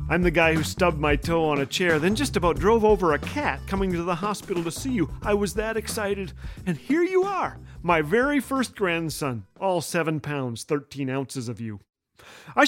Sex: male